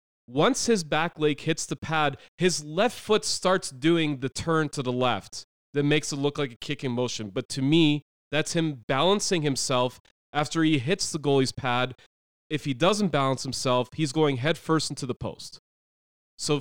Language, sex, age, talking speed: English, male, 30-49, 190 wpm